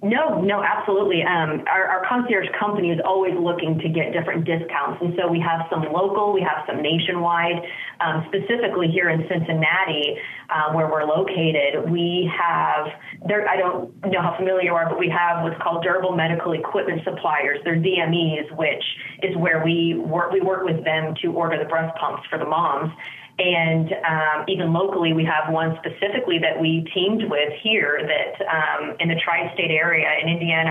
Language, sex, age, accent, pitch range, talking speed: English, female, 30-49, American, 155-180 Hz, 180 wpm